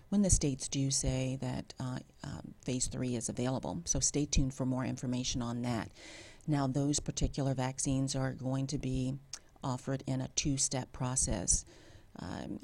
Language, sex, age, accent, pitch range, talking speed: Spanish, female, 40-59, American, 130-150 Hz, 160 wpm